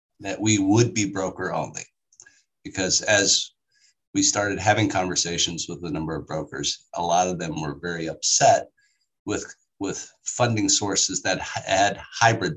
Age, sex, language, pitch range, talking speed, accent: 50-69, male, English, 90-130 Hz, 150 wpm, American